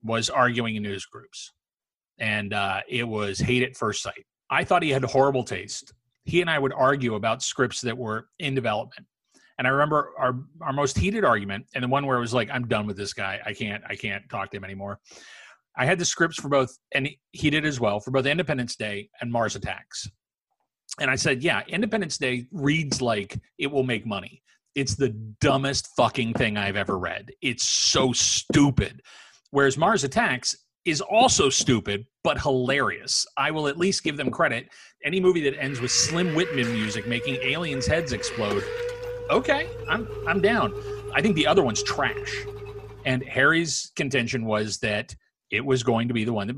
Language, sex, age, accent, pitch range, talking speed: English, male, 30-49, American, 110-145 Hz, 190 wpm